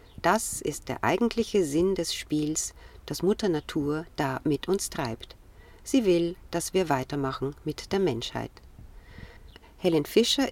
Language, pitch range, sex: German, 140-190 Hz, female